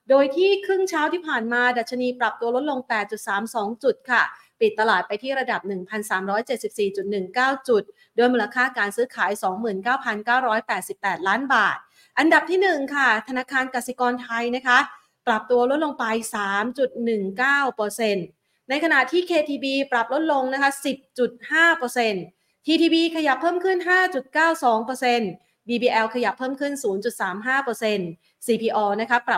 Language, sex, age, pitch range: Thai, female, 30-49, 205-265 Hz